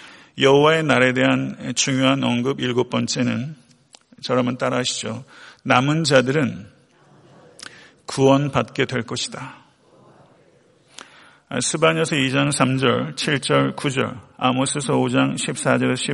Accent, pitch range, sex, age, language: native, 125-150 Hz, male, 50-69, Korean